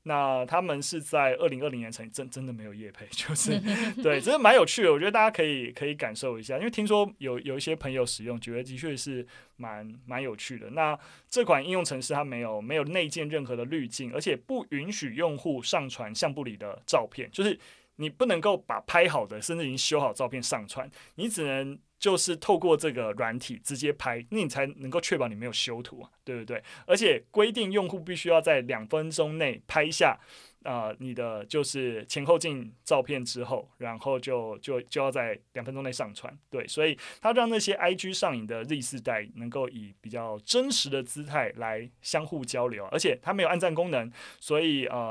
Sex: male